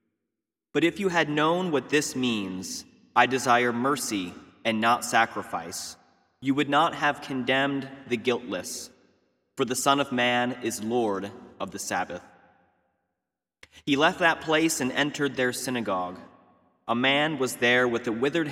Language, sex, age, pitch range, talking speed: English, male, 30-49, 105-145 Hz, 150 wpm